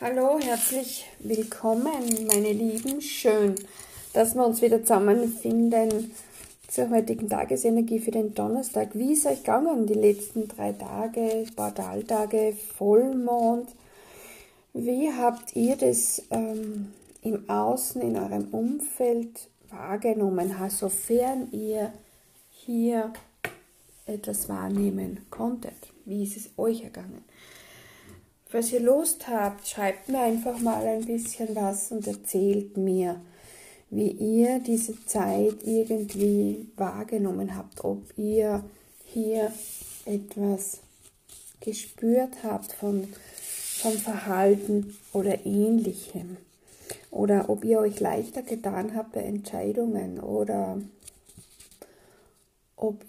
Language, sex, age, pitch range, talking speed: German, female, 50-69, 200-230 Hz, 105 wpm